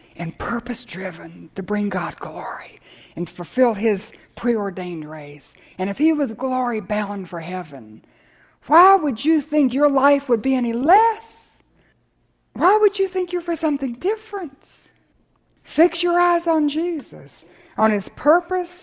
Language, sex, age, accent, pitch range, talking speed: English, female, 60-79, American, 255-345 Hz, 140 wpm